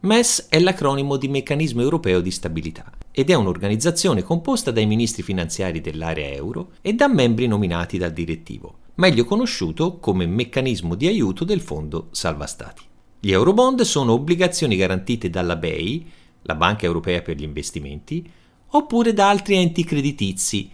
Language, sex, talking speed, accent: Italian, male, 150 wpm, native